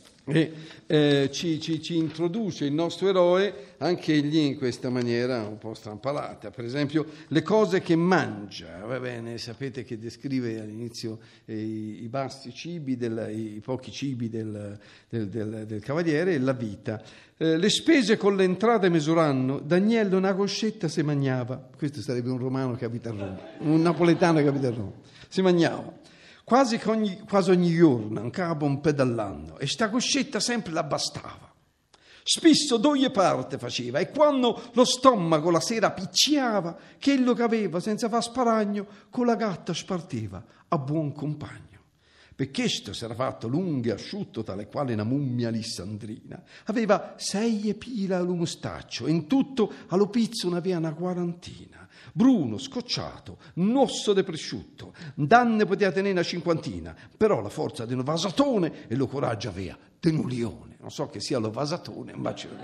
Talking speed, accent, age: 160 wpm, native, 50-69